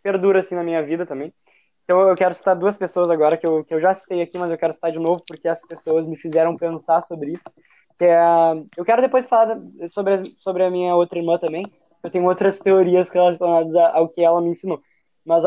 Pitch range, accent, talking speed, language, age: 165-195 Hz, Brazilian, 225 wpm, Portuguese, 10-29